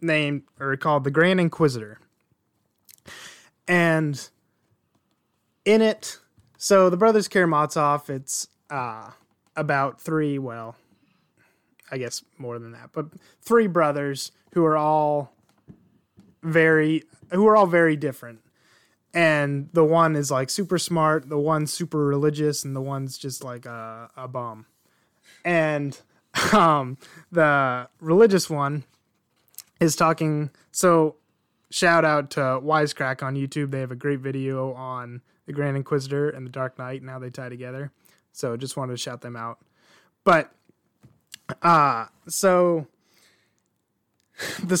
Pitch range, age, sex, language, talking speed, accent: 130-165 Hz, 20-39, male, English, 130 wpm, American